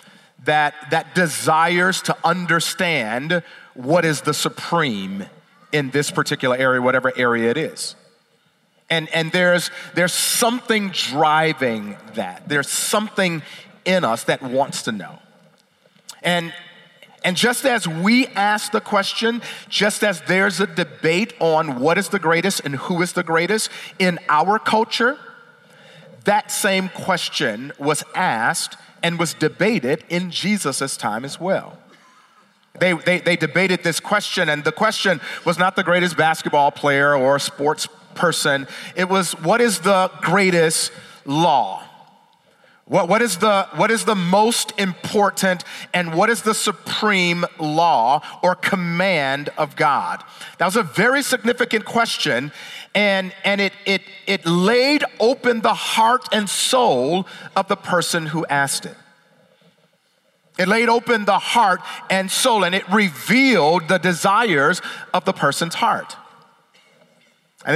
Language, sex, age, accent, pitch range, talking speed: English, male, 40-59, American, 165-205 Hz, 135 wpm